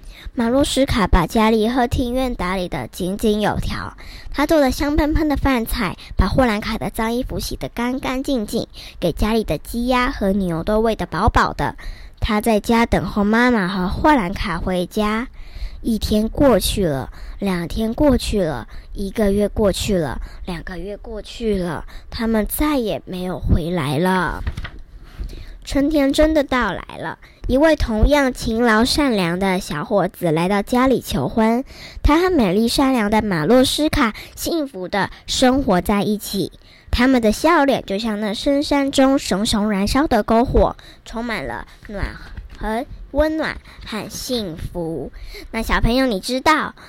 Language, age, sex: Chinese, 20-39, male